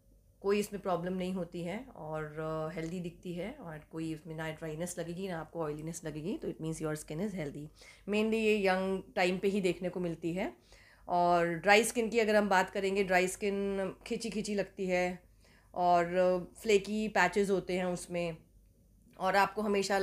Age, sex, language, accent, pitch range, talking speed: 30-49, female, Hindi, native, 170-200 Hz, 185 wpm